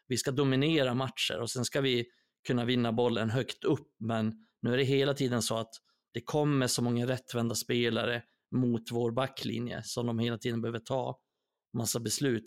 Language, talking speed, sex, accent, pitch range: Swedish, 185 wpm, male, native, 115-125 Hz